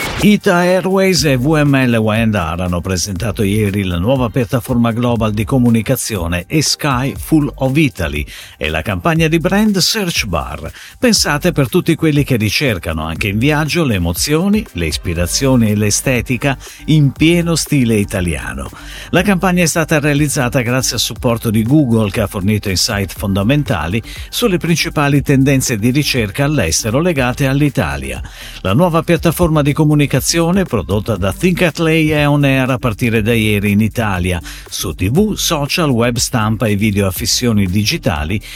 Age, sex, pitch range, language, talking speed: 50-69, male, 105-155 Hz, Italian, 150 wpm